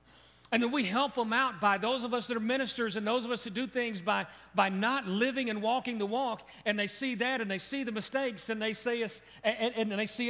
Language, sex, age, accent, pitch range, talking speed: English, male, 40-59, American, 140-220 Hz, 270 wpm